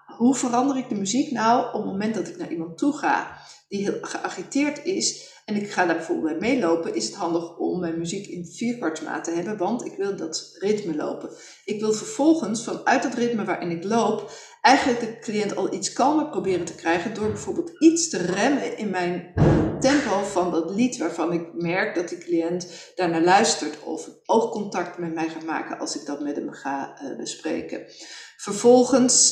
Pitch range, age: 175-235 Hz, 40-59